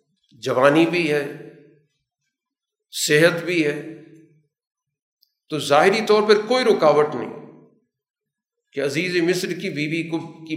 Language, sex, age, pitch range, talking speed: Urdu, male, 50-69, 145-190 Hz, 120 wpm